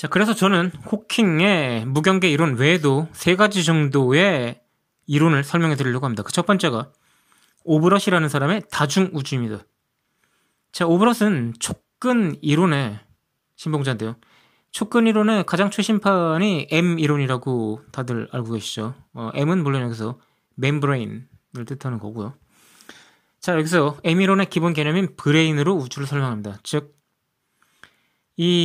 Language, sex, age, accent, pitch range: Korean, male, 20-39, native, 130-175 Hz